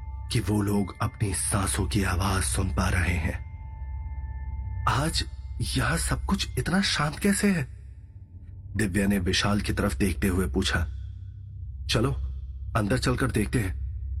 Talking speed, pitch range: 135 wpm, 90-105 Hz